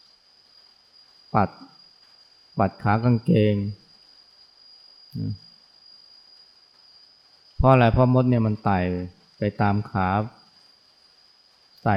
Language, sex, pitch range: Thai, male, 105-130 Hz